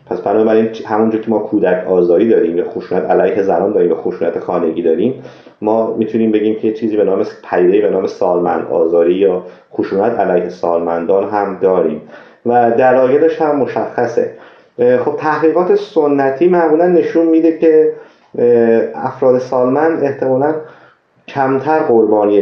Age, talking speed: 30-49, 135 wpm